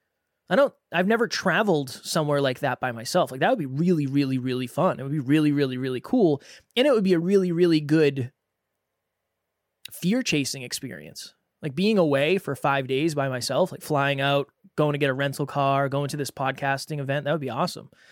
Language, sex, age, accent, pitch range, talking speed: English, male, 20-39, American, 140-205 Hz, 205 wpm